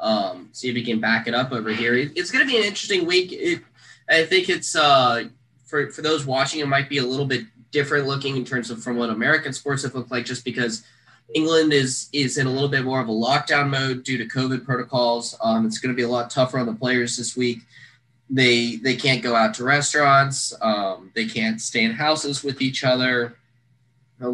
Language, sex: English, male